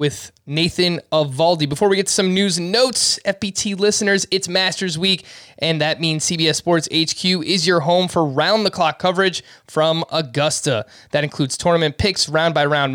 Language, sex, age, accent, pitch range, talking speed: English, male, 20-39, American, 145-180 Hz, 160 wpm